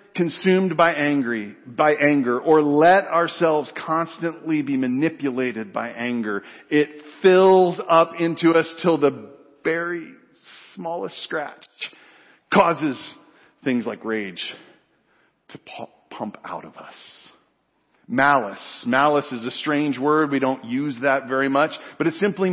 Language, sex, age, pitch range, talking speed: English, male, 40-59, 115-165 Hz, 125 wpm